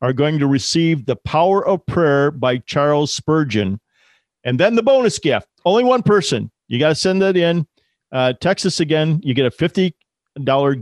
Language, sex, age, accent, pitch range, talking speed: English, male, 40-59, American, 125-150 Hz, 185 wpm